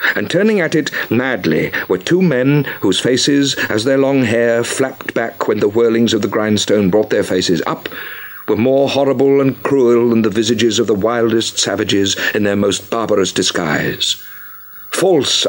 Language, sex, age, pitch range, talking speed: English, male, 50-69, 115-155 Hz, 170 wpm